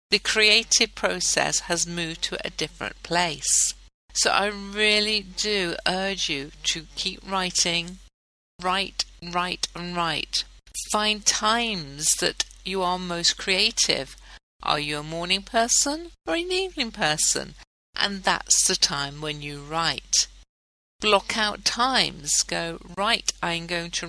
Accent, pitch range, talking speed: British, 155-195 Hz, 130 wpm